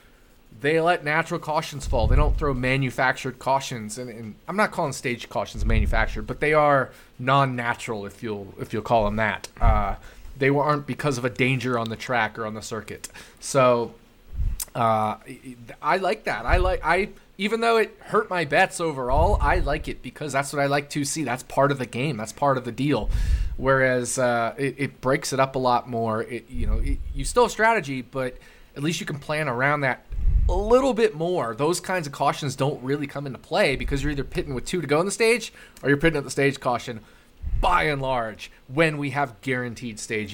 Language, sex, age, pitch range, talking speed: English, male, 20-39, 115-145 Hz, 210 wpm